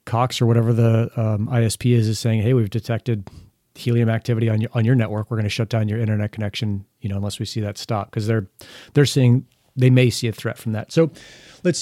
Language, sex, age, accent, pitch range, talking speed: English, male, 40-59, American, 110-130 Hz, 240 wpm